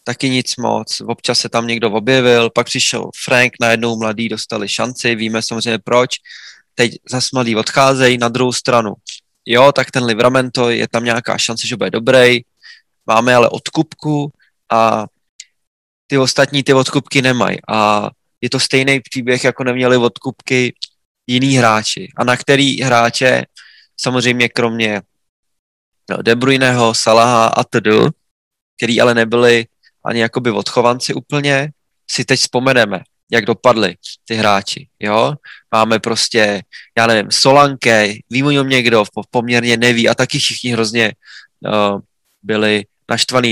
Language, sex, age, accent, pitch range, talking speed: Czech, male, 20-39, native, 115-130 Hz, 135 wpm